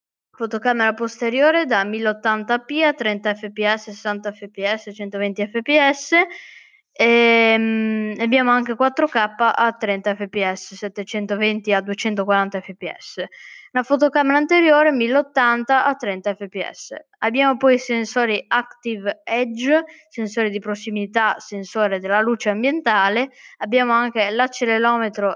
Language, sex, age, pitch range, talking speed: Italian, female, 20-39, 210-260 Hz, 105 wpm